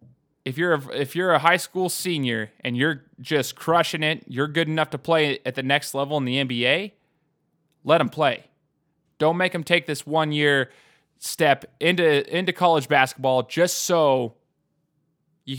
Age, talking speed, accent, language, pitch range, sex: 20-39, 170 wpm, American, English, 130-160 Hz, male